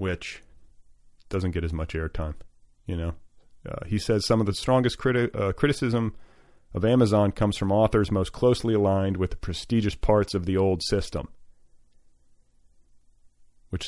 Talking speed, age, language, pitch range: 150 wpm, 30-49, English, 85-110 Hz